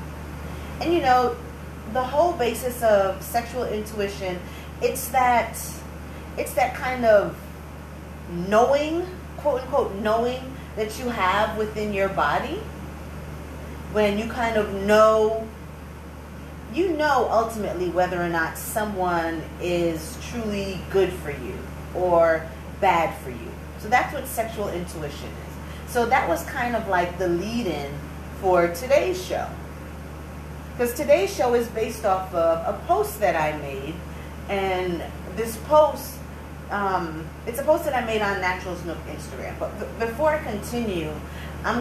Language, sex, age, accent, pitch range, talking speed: English, female, 30-49, American, 170-240 Hz, 135 wpm